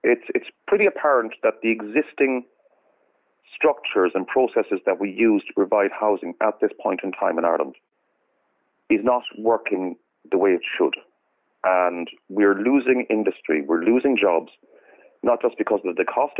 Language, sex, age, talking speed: English, male, 40-59, 155 wpm